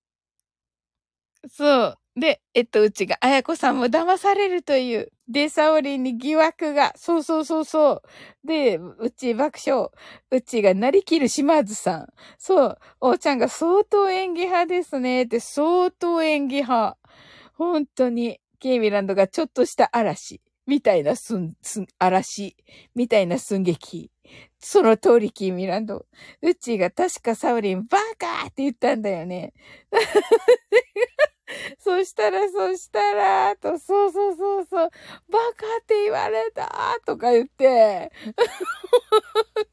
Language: Japanese